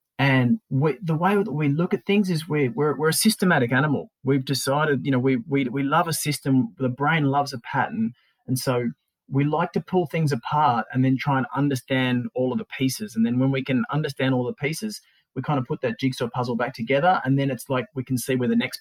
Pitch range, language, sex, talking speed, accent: 125-160 Hz, English, male, 245 wpm, Australian